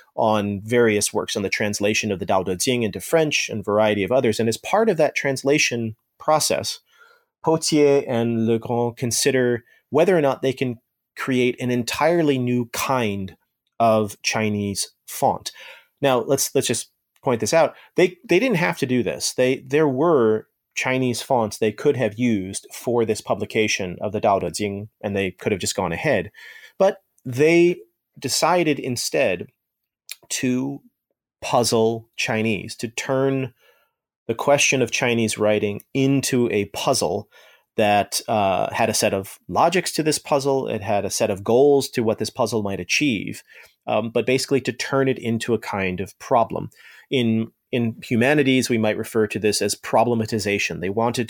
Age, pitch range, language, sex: 30-49, 110-135 Hz, English, male